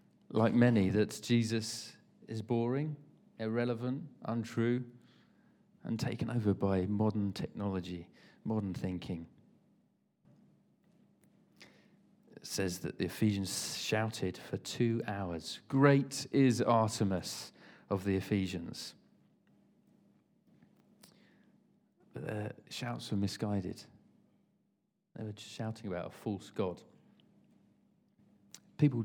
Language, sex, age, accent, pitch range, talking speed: English, male, 40-59, British, 100-120 Hz, 95 wpm